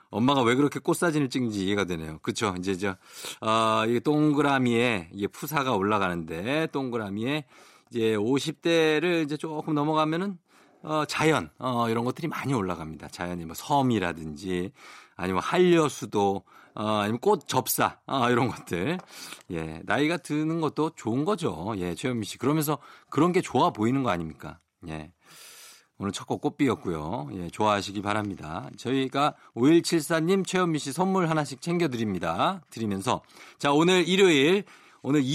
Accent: native